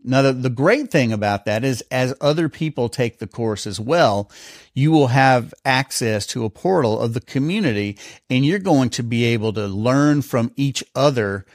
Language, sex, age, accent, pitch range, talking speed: English, male, 50-69, American, 115-140 Hz, 185 wpm